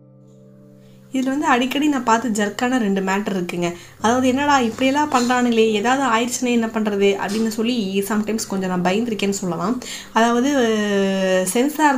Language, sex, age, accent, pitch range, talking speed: Tamil, female, 20-39, native, 205-245 Hz, 130 wpm